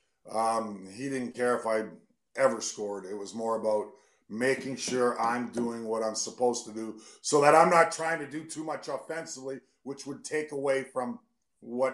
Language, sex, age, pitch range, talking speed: English, male, 50-69, 115-135 Hz, 185 wpm